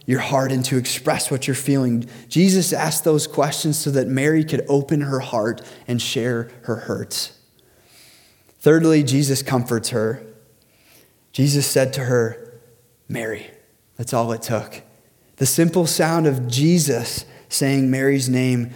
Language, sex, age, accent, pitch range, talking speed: English, male, 20-39, American, 120-155 Hz, 140 wpm